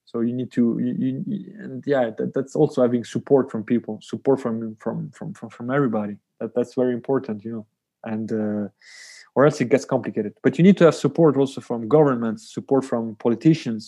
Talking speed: 200 wpm